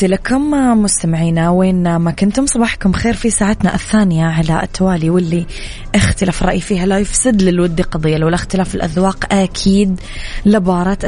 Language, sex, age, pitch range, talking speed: Arabic, female, 20-39, 170-195 Hz, 135 wpm